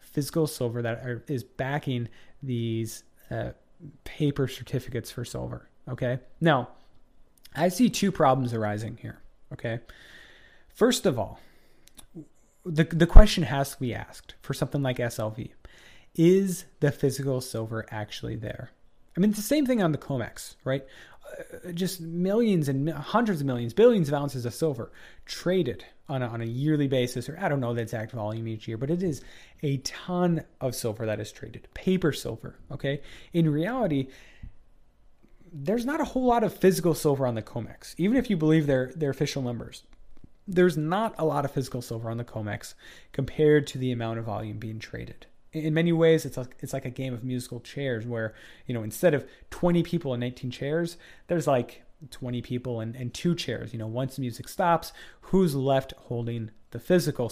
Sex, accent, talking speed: male, American, 180 wpm